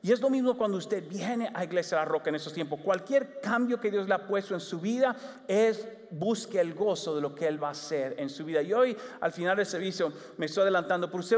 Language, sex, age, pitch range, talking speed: English, male, 40-59, 180-235 Hz, 265 wpm